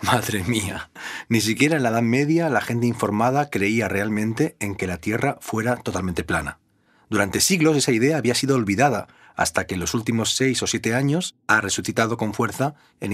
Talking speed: 185 wpm